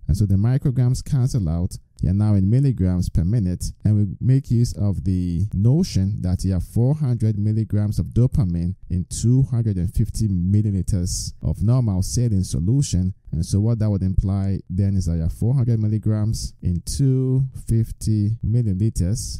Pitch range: 90-120 Hz